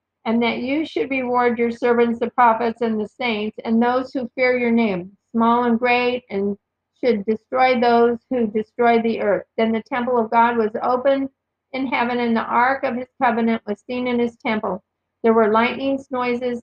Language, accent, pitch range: English, American, 220-245 Hz